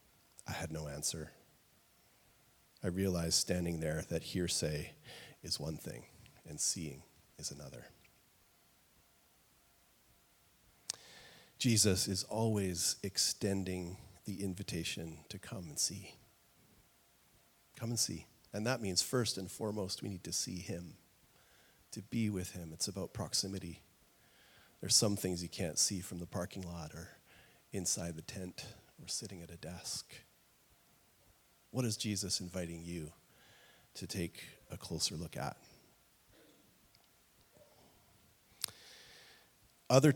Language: English